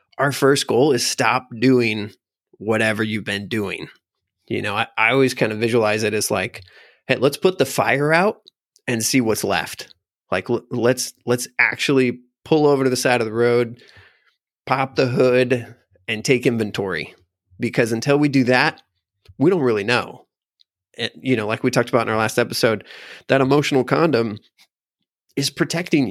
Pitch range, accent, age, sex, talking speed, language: 110-130 Hz, American, 30-49, male, 170 wpm, English